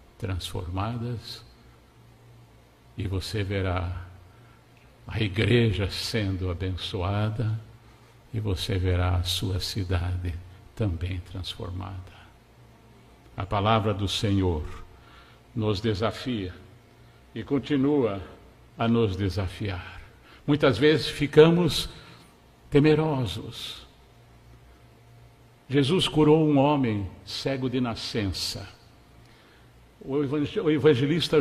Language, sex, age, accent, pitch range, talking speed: Portuguese, male, 60-79, Brazilian, 95-135 Hz, 75 wpm